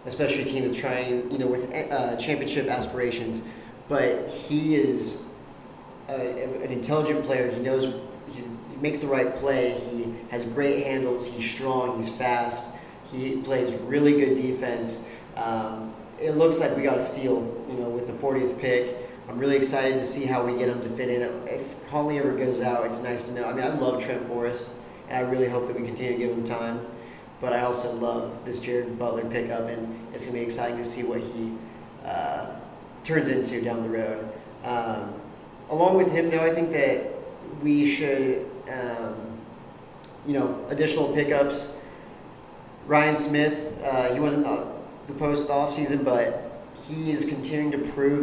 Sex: male